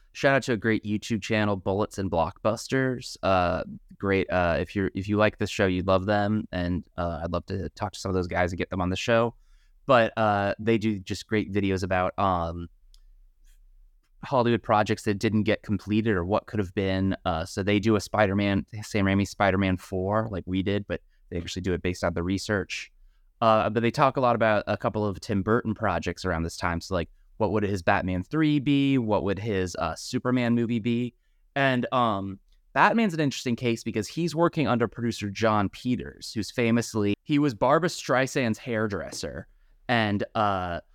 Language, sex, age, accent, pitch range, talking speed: English, male, 20-39, American, 95-115 Hz, 200 wpm